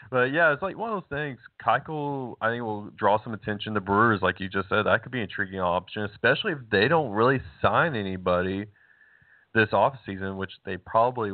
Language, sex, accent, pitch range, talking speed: English, male, American, 95-115 Hz, 205 wpm